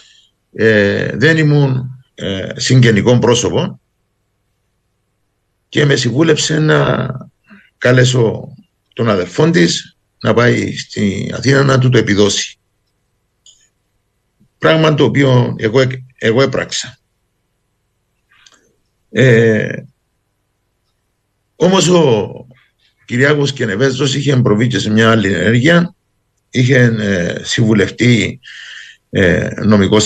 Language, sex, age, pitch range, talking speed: Greek, male, 60-79, 100-130 Hz, 85 wpm